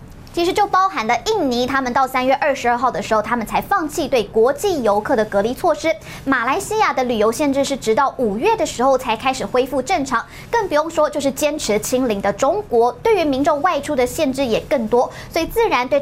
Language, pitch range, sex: Chinese, 235-325 Hz, male